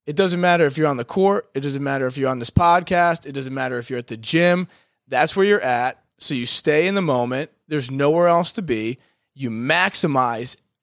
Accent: American